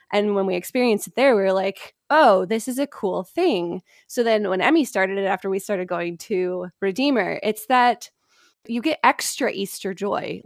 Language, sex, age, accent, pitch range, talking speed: English, female, 20-39, American, 185-245 Hz, 195 wpm